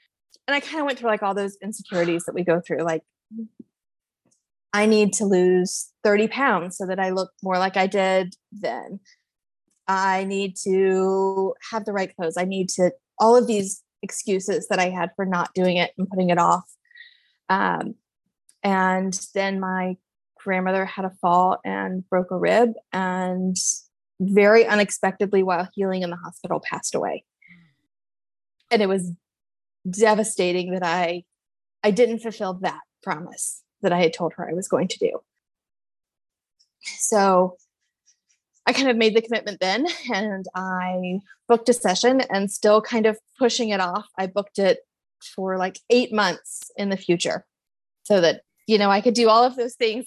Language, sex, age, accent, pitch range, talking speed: English, female, 20-39, American, 185-220 Hz, 165 wpm